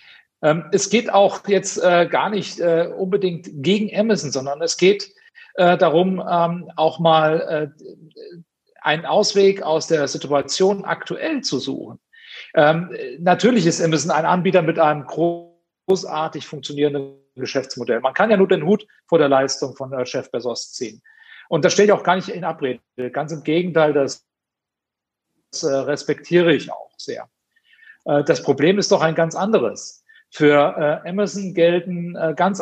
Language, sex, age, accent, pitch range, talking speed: German, male, 40-59, German, 150-190 Hz, 135 wpm